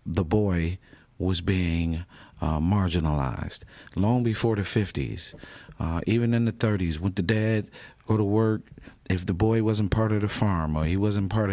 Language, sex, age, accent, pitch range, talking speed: English, male, 40-59, American, 90-110 Hz, 170 wpm